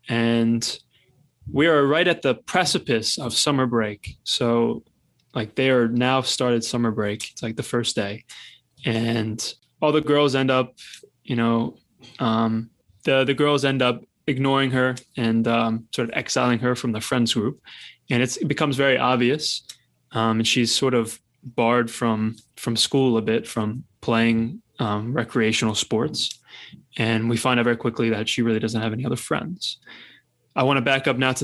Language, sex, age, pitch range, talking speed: English, male, 20-39, 115-130 Hz, 175 wpm